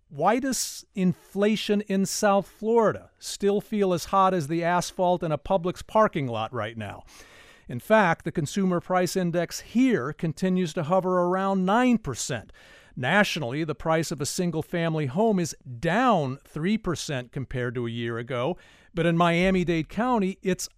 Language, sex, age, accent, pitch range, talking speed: English, male, 50-69, American, 150-200 Hz, 155 wpm